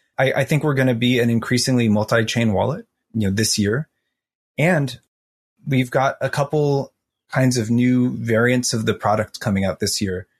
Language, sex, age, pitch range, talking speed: English, male, 30-49, 100-120 Hz, 180 wpm